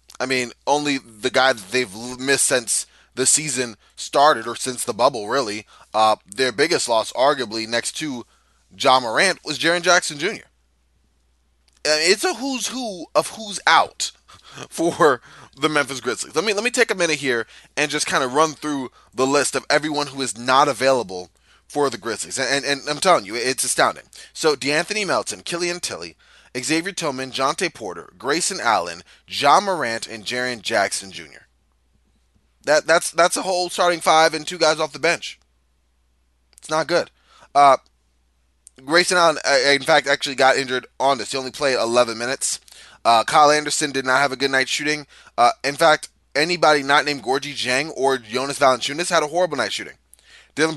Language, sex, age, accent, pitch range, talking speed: English, male, 20-39, American, 120-155 Hz, 180 wpm